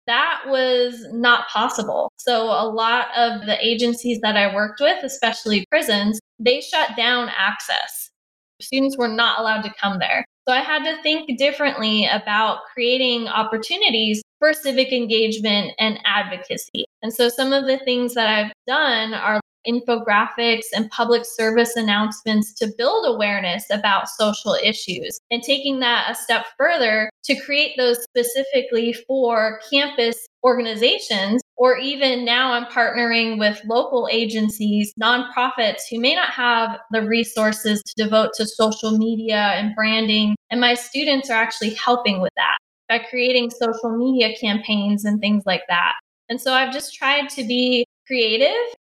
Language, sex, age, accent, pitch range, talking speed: English, female, 10-29, American, 220-255 Hz, 150 wpm